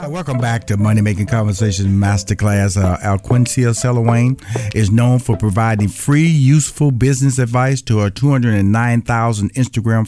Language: English